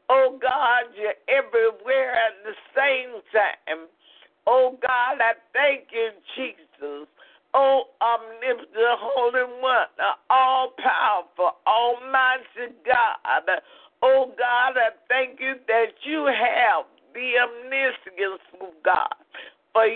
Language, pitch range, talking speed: English, 230-270 Hz, 100 wpm